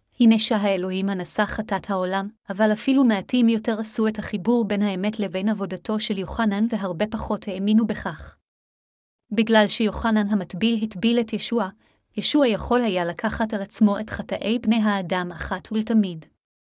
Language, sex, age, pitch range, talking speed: Hebrew, female, 30-49, 195-230 Hz, 145 wpm